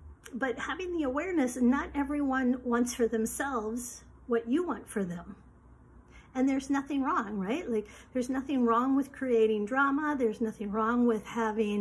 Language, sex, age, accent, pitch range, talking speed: English, female, 50-69, American, 225-270 Hz, 160 wpm